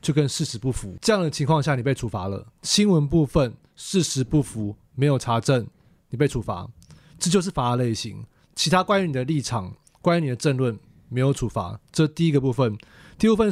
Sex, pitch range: male, 130-175 Hz